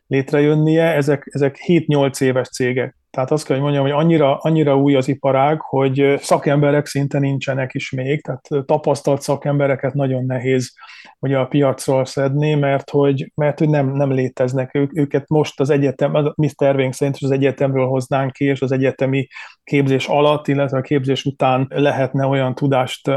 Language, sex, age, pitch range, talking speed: Hungarian, male, 30-49, 135-145 Hz, 165 wpm